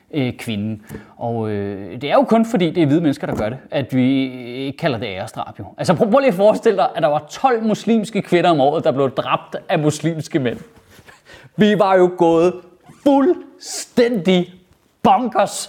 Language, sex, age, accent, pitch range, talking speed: Danish, male, 30-49, native, 180-270 Hz, 185 wpm